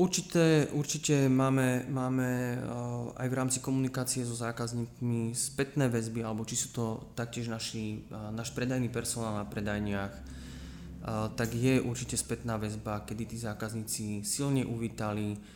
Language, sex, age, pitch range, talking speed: Slovak, male, 20-39, 110-125 Hz, 125 wpm